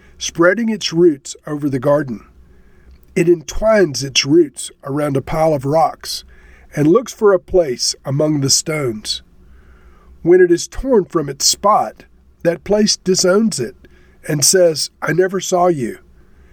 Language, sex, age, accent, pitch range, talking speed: English, male, 50-69, American, 125-185 Hz, 145 wpm